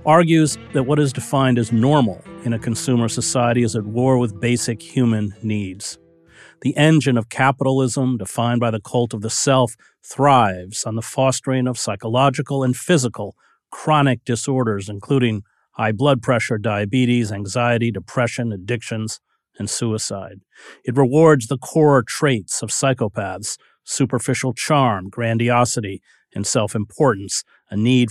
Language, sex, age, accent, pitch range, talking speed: English, male, 40-59, American, 110-130 Hz, 135 wpm